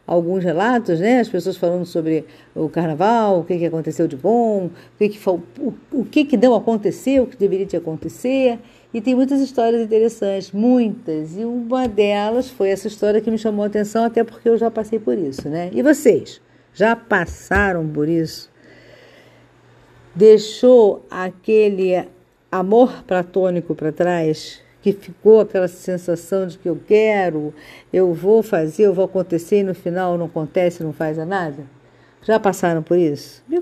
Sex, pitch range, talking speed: female, 165-220 Hz, 170 wpm